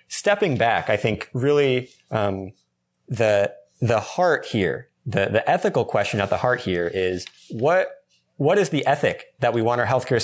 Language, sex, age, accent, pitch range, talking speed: English, male, 30-49, American, 110-140 Hz, 170 wpm